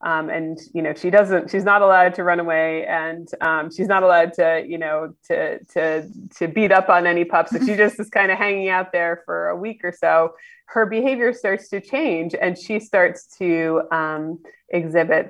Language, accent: English, American